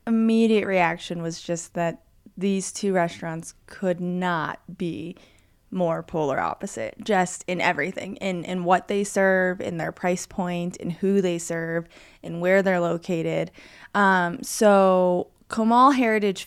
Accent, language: American, English